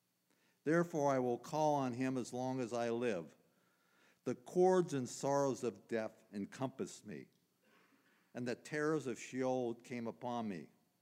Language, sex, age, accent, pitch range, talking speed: English, male, 50-69, American, 105-135 Hz, 145 wpm